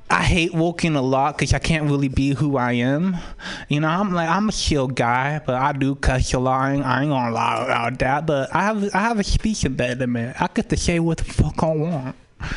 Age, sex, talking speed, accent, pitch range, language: 20-39, male, 255 wpm, American, 155-240 Hz, English